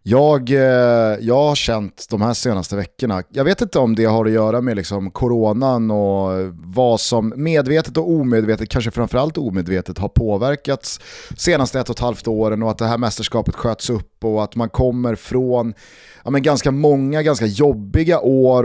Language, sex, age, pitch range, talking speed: Swedish, male, 30-49, 105-130 Hz, 180 wpm